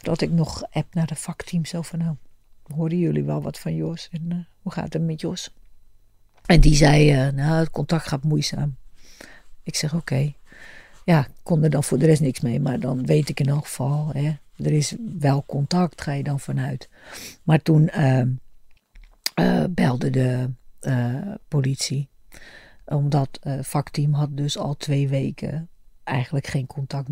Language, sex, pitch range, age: Dutch, female, 135-160 Hz, 50-69